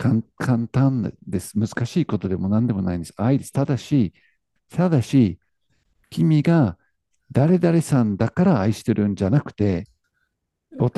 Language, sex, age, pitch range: Japanese, male, 50-69, 100-140 Hz